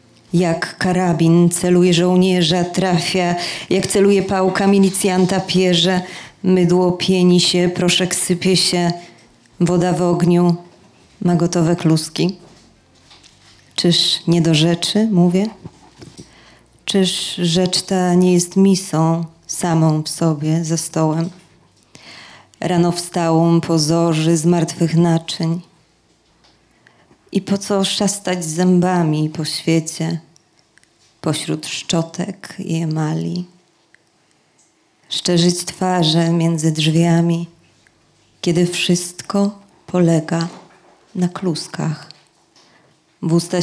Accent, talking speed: native, 90 wpm